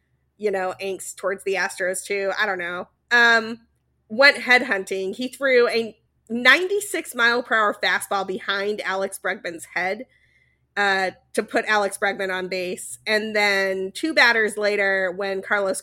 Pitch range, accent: 195-235 Hz, American